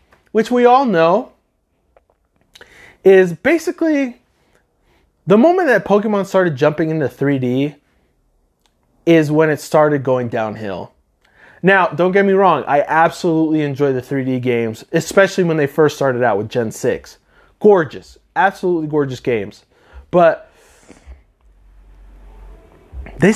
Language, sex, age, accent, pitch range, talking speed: English, male, 20-39, American, 130-195 Hz, 120 wpm